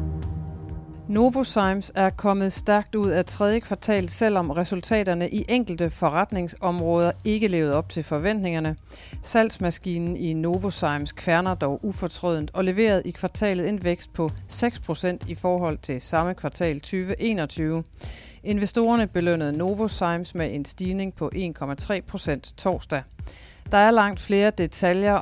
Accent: native